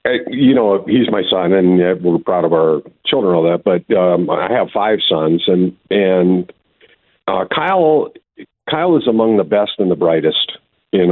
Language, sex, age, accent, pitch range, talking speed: English, male, 50-69, American, 90-105 Hz, 180 wpm